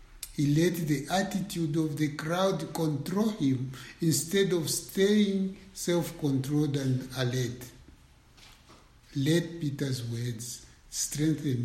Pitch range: 130-185 Hz